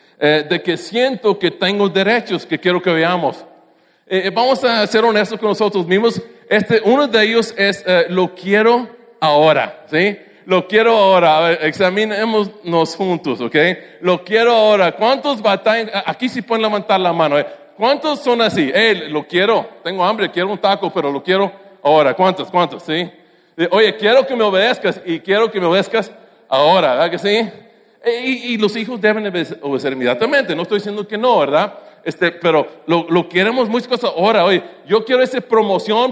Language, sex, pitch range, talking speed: English, male, 170-220 Hz, 180 wpm